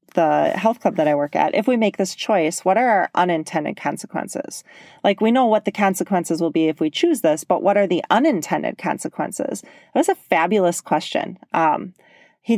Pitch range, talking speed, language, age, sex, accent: 170-230 Hz, 195 wpm, English, 30-49, female, American